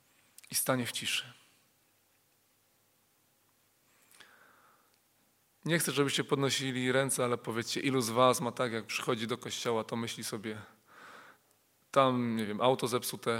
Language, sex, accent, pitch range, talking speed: Polish, male, native, 120-150 Hz, 125 wpm